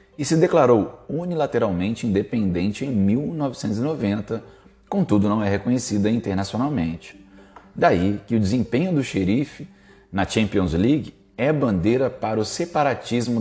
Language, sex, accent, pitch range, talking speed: Portuguese, male, Brazilian, 100-135 Hz, 115 wpm